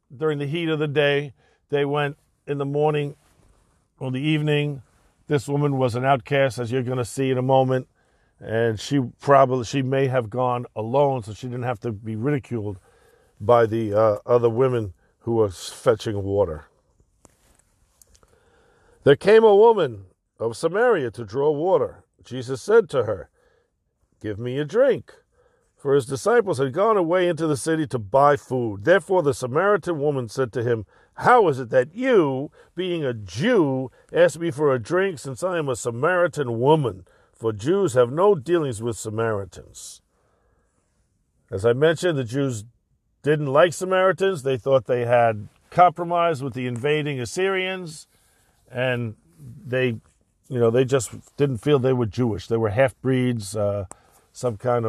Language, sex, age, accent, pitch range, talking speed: English, male, 50-69, American, 115-155 Hz, 160 wpm